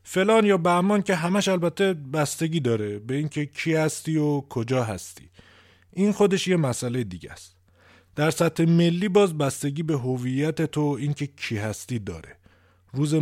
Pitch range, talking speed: 105-155 Hz, 155 wpm